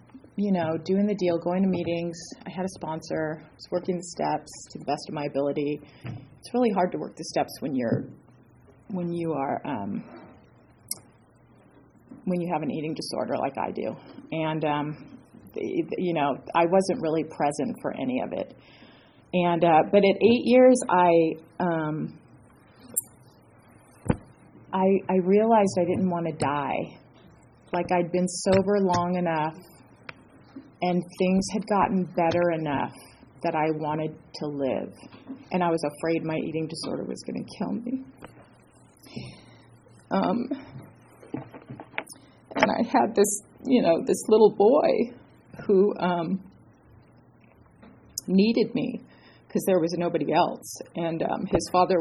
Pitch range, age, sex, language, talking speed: 155-190 Hz, 30-49, female, English, 145 wpm